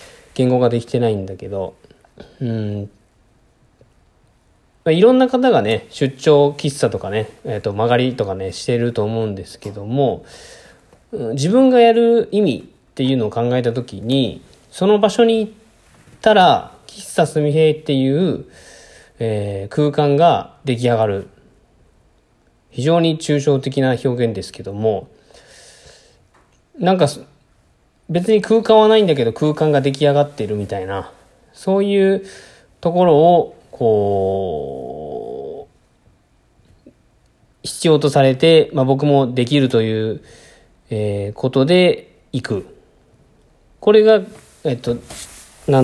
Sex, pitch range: male, 110-155 Hz